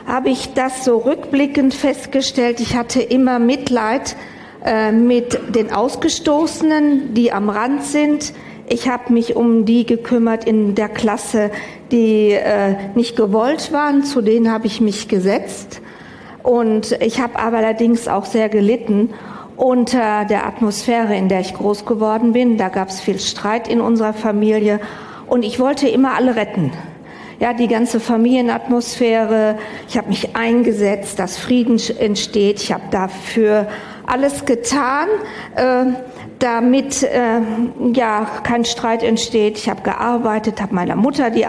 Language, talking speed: German, 140 wpm